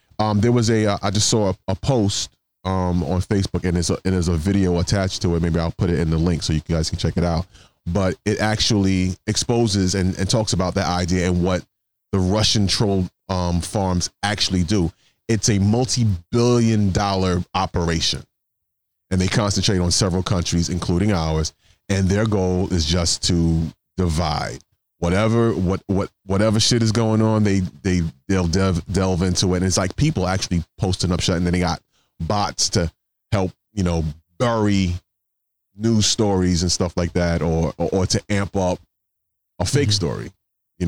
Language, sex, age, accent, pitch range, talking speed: English, male, 30-49, American, 90-105 Hz, 185 wpm